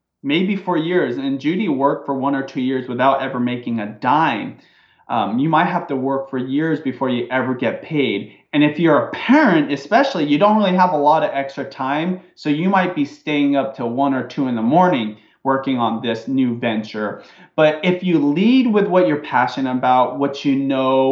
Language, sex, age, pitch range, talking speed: English, male, 30-49, 130-160 Hz, 210 wpm